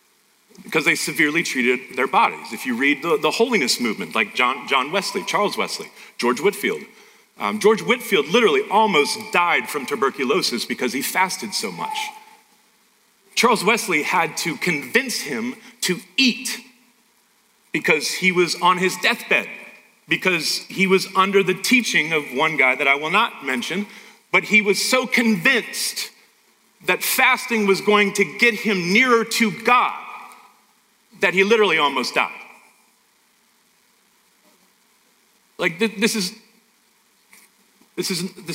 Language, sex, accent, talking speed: English, male, American, 130 wpm